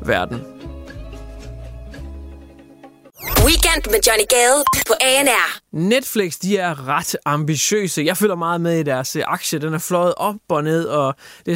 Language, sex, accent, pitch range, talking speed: English, male, Danish, 155-210 Hz, 135 wpm